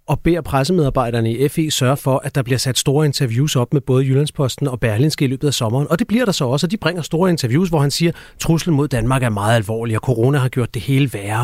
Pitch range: 130-160 Hz